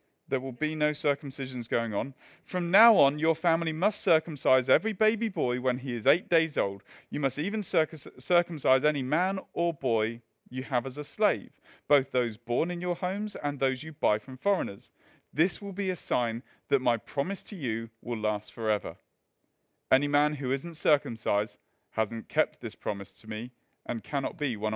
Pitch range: 130-200 Hz